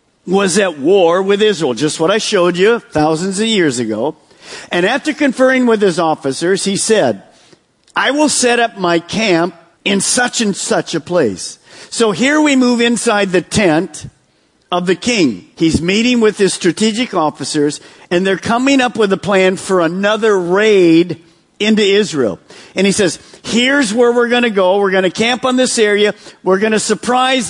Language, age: English, 50-69